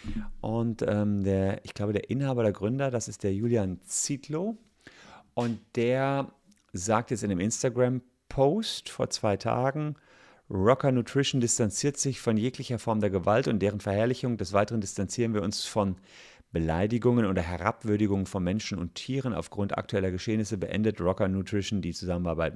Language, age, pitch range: German, 40-59, 95-125 Hz